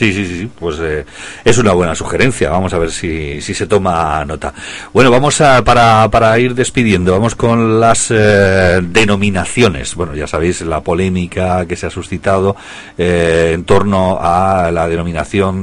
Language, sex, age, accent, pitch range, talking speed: Spanish, male, 40-59, Spanish, 85-100 Hz, 175 wpm